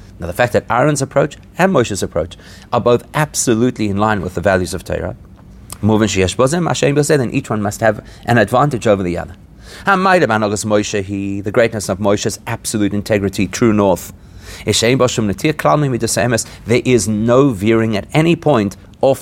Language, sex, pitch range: English, male, 100-125 Hz